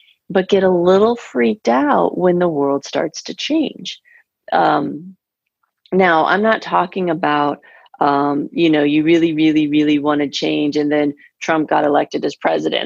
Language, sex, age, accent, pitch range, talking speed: English, female, 30-49, American, 150-195 Hz, 165 wpm